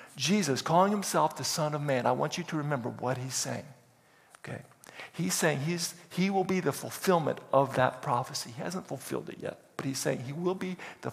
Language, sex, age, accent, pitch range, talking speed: English, male, 50-69, American, 150-185 Hz, 205 wpm